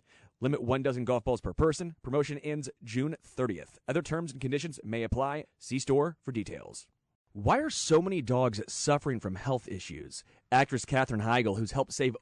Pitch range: 120-160 Hz